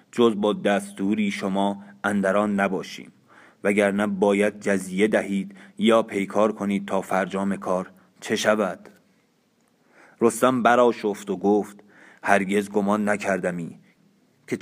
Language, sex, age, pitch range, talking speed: Persian, male, 30-49, 100-110 Hz, 110 wpm